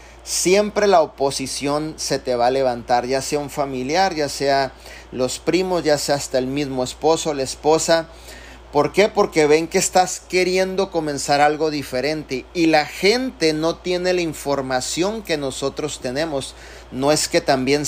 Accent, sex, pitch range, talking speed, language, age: Mexican, male, 130-165 Hz, 160 wpm, Spanish, 40-59